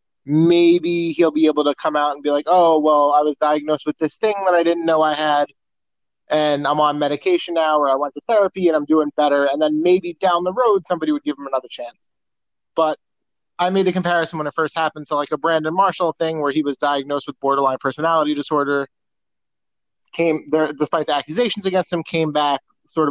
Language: English